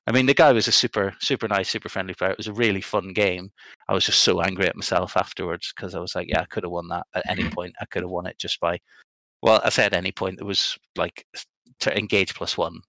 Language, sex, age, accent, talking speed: English, male, 30-49, British, 275 wpm